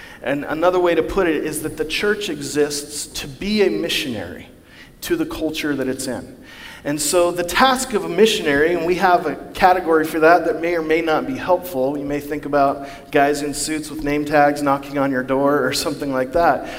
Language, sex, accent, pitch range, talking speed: English, male, American, 145-190 Hz, 215 wpm